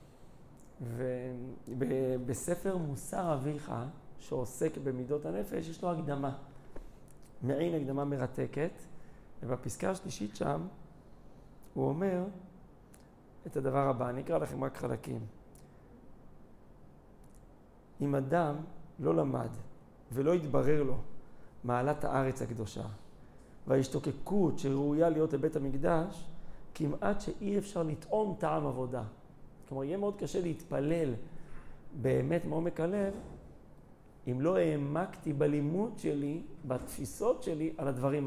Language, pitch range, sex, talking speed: Hebrew, 130-170 Hz, male, 100 wpm